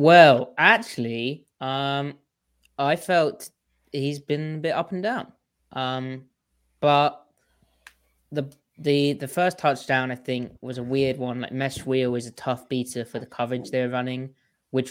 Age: 20-39